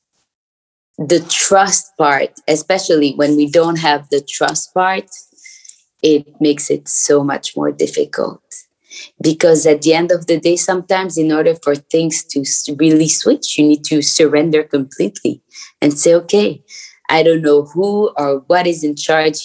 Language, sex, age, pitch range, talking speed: English, female, 20-39, 150-190 Hz, 155 wpm